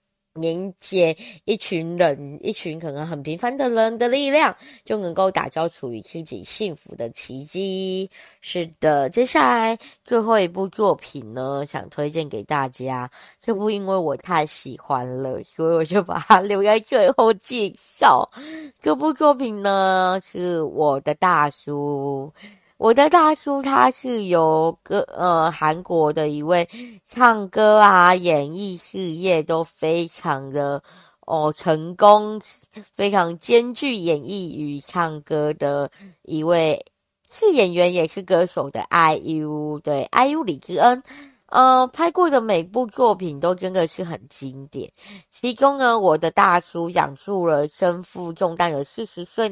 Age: 20-39